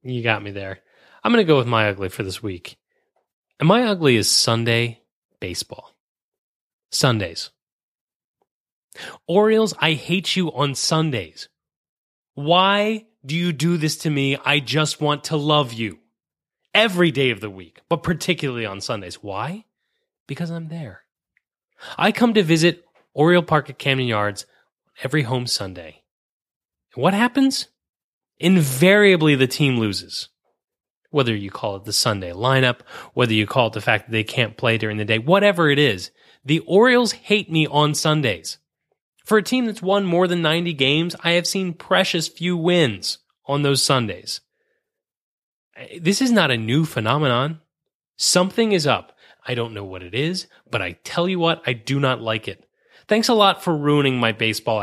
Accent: American